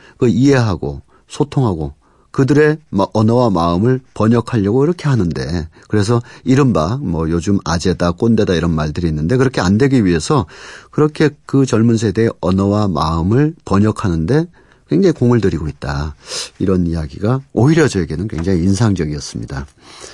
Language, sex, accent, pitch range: Korean, male, native, 85-125 Hz